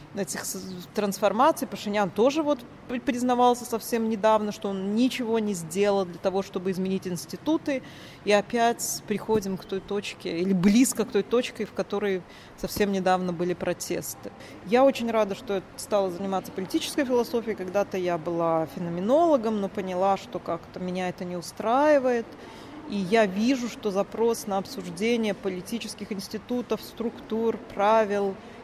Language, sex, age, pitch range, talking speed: Russian, female, 30-49, 195-235 Hz, 140 wpm